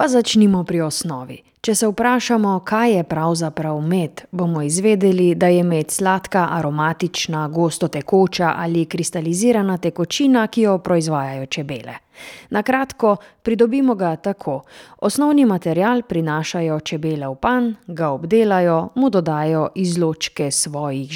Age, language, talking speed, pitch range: 30-49, German, 120 wpm, 160-210 Hz